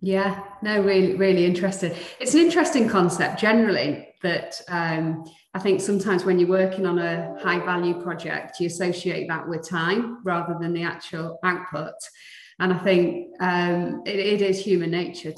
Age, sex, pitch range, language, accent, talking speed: 30-49, female, 165-190 Hz, English, British, 165 wpm